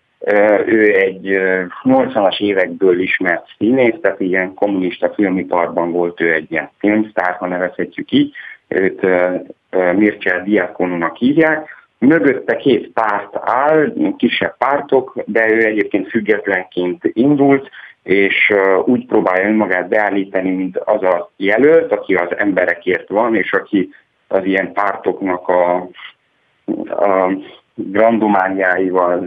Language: Hungarian